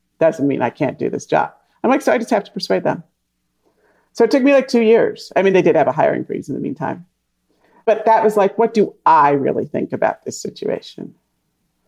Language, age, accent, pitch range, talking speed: English, 40-59, American, 155-210 Hz, 230 wpm